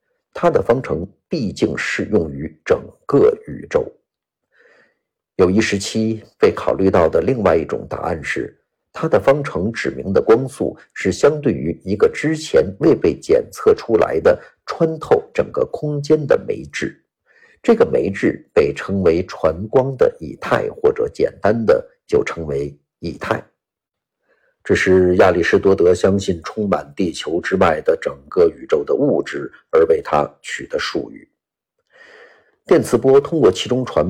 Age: 50-69